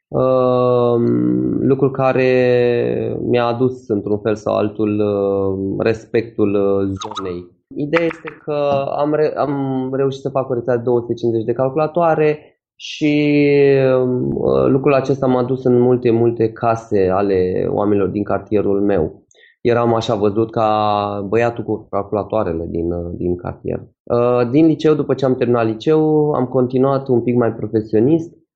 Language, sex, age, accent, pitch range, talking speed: Romanian, male, 20-39, native, 100-130 Hz, 130 wpm